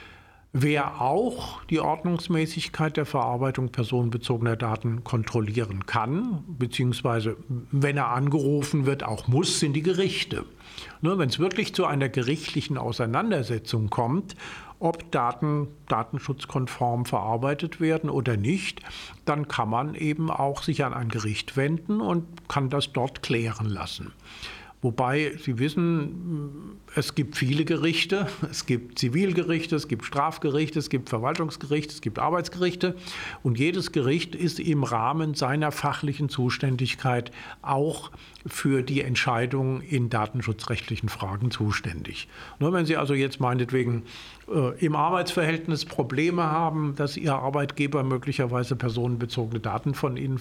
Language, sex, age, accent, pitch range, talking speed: German, male, 50-69, German, 125-160 Hz, 125 wpm